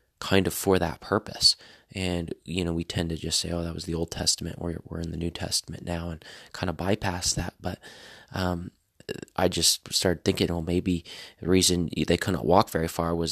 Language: English